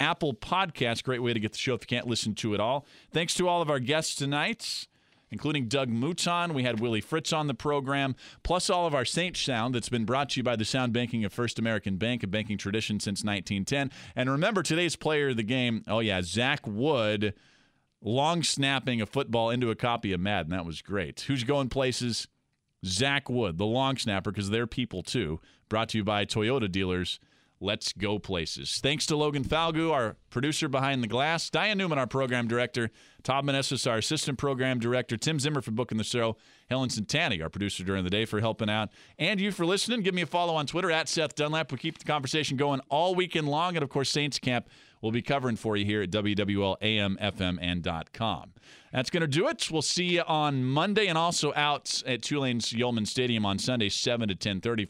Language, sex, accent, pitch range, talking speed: English, male, American, 110-150 Hz, 215 wpm